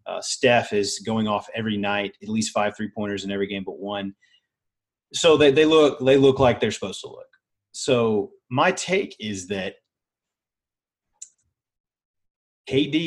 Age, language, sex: 30-49, English, male